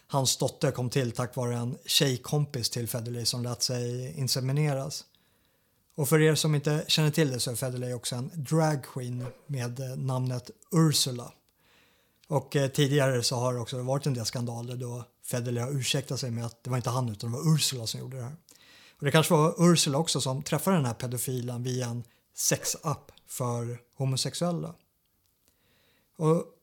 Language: Swedish